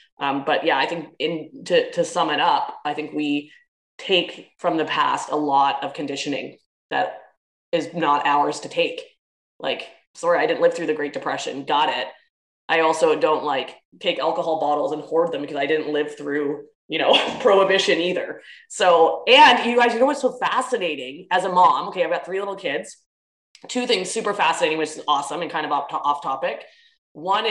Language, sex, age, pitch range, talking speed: English, female, 20-39, 165-210 Hz, 200 wpm